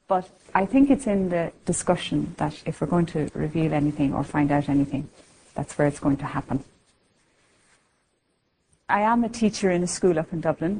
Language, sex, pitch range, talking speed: English, female, 155-205 Hz, 190 wpm